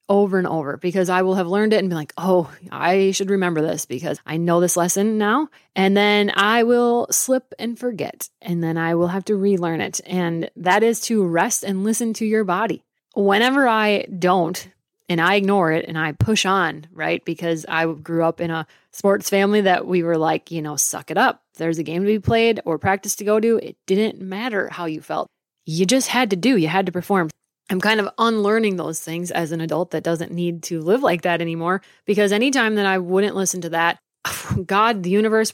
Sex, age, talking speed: female, 20-39, 220 wpm